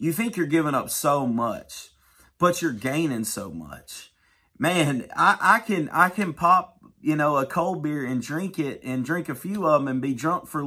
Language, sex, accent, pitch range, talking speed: English, male, American, 130-175 Hz, 215 wpm